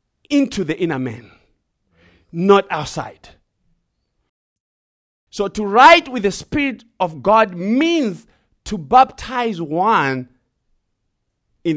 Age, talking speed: 50-69, 95 wpm